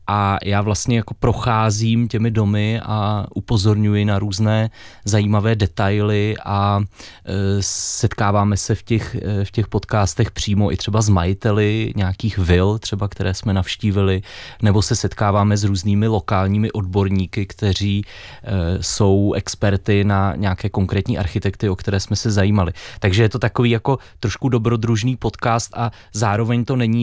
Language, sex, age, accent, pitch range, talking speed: Czech, male, 20-39, native, 100-115 Hz, 140 wpm